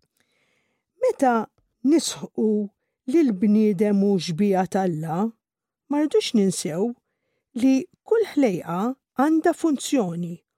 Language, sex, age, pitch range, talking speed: English, female, 50-69, 190-265 Hz, 85 wpm